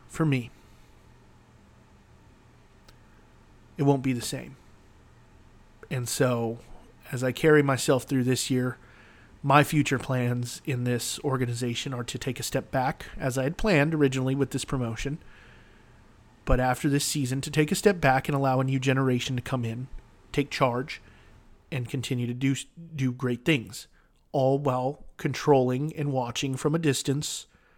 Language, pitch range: English, 120-135 Hz